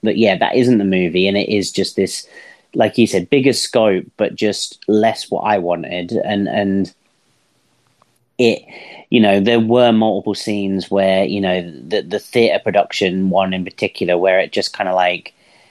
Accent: British